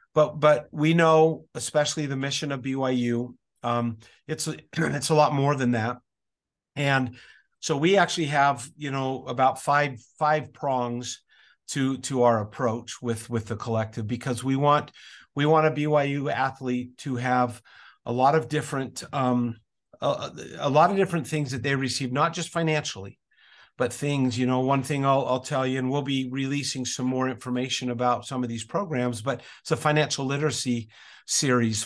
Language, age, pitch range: English, 50-69, 120-145 Hz